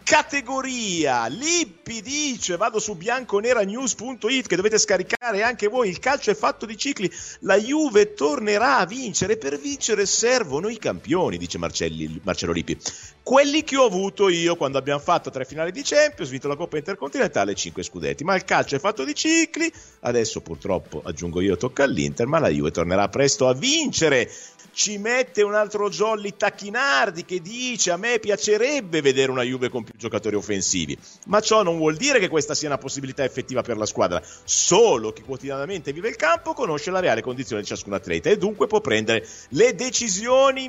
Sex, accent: male, native